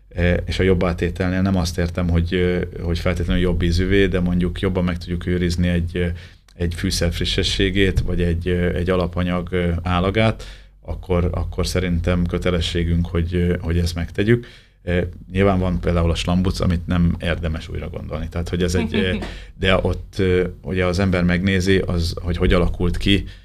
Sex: male